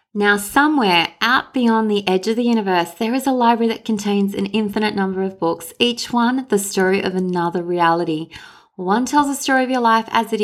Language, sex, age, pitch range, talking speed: English, female, 20-39, 180-220 Hz, 205 wpm